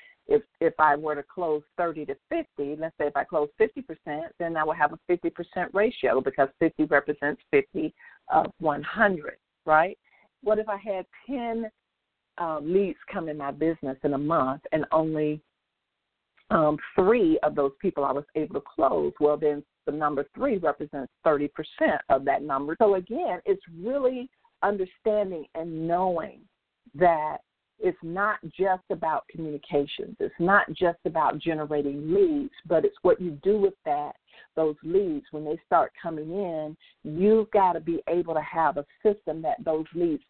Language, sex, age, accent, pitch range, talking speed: English, female, 50-69, American, 155-210 Hz, 165 wpm